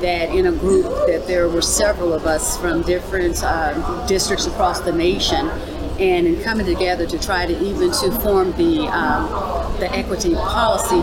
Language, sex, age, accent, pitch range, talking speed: English, female, 50-69, American, 180-235 Hz, 175 wpm